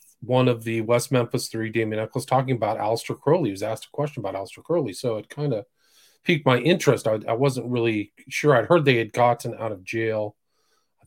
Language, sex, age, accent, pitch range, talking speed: English, male, 40-59, American, 110-140 Hz, 220 wpm